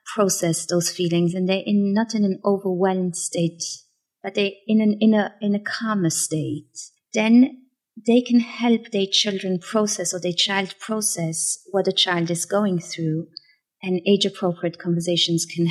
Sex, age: female, 30-49